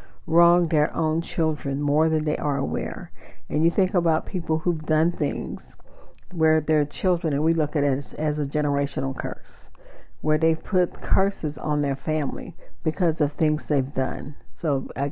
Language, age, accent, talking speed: English, 50-69, American, 175 wpm